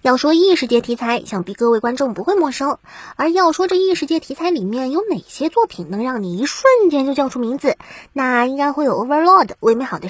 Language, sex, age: Chinese, male, 20-39